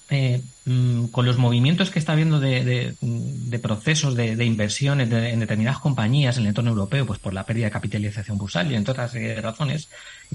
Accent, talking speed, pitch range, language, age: Spanish, 190 wpm, 110-135 Hz, Spanish, 30-49